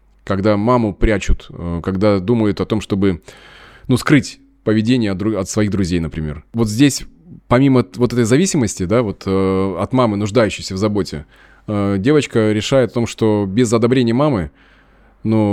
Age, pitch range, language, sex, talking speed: 20-39, 100-125 Hz, Russian, male, 150 wpm